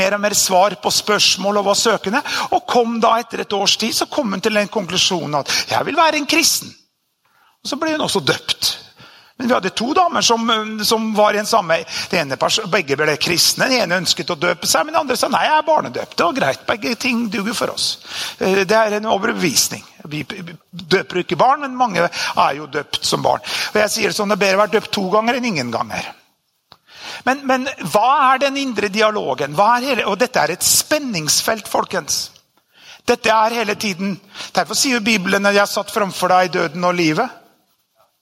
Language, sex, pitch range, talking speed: English, male, 185-240 Hz, 225 wpm